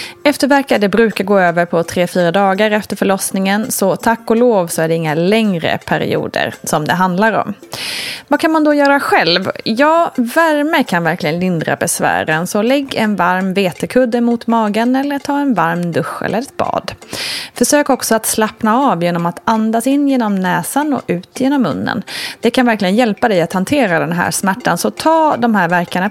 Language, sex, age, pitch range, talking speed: Swedish, female, 30-49, 180-260 Hz, 185 wpm